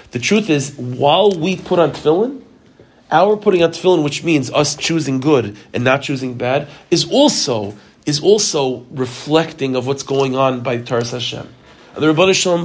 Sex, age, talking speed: male, 40-59, 175 wpm